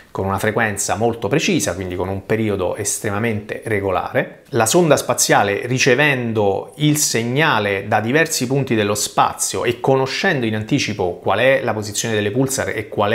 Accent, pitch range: native, 105-130 Hz